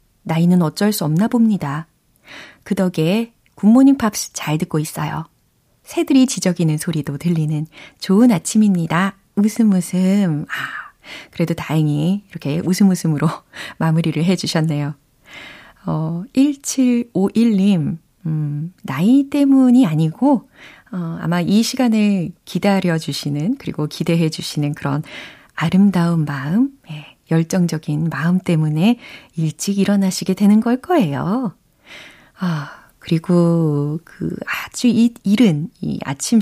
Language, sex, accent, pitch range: Korean, female, native, 160-215 Hz